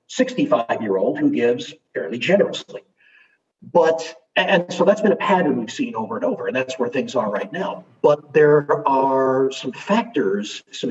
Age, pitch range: 50-69, 130-170 Hz